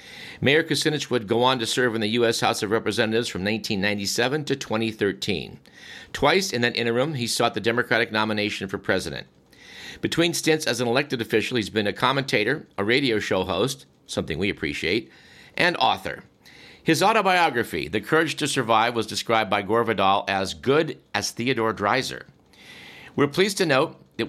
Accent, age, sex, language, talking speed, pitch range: American, 50-69, male, English, 170 wpm, 105-130 Hz